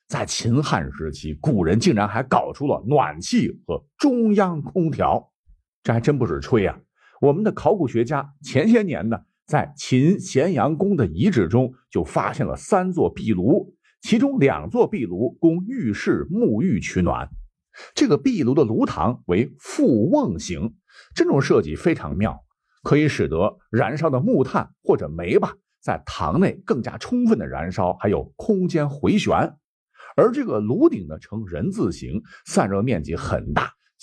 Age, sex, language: 50-69, male, Chinese